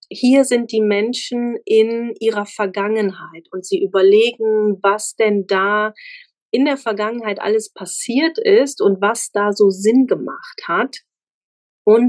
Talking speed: 135 wpm